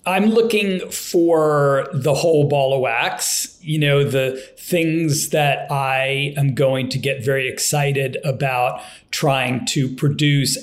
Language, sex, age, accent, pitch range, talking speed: English, male, 40-59, American, 140-170 Hz, 135 wpm